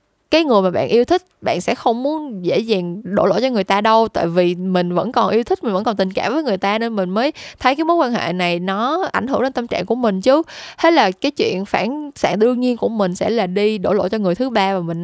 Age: 10-29